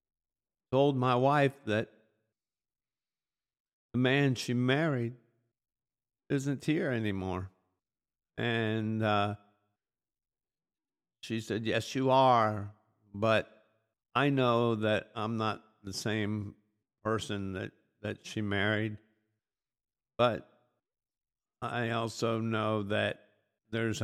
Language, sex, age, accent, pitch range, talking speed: English, male, 50-69, American, 95-115 Hz, 90 wpm